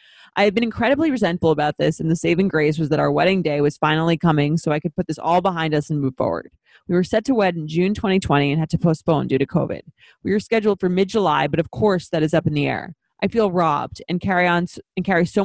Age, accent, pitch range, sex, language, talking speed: 20-39, American, 155-185 Hz, female, English, 265 wpm